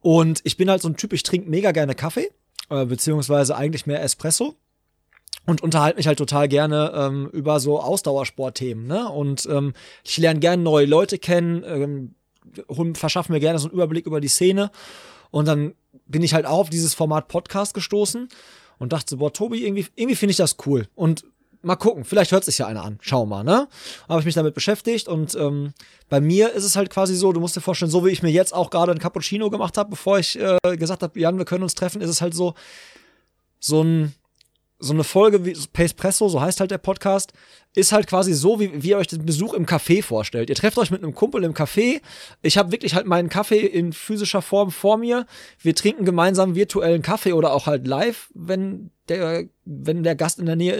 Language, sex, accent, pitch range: German, male, German, 150-195 Hz